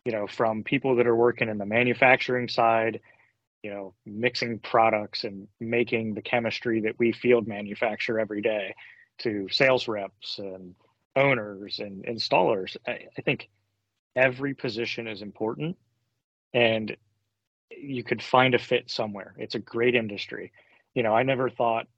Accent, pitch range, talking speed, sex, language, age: American, 105-120 Hz, 150 wpm, male, English, 30-49